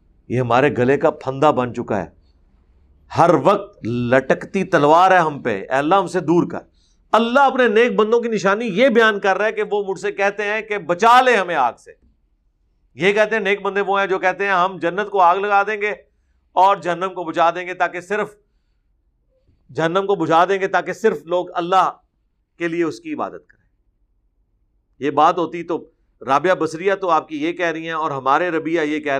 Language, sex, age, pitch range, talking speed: Urdu, male, 50-69, 135-200 Hz, 195 wpm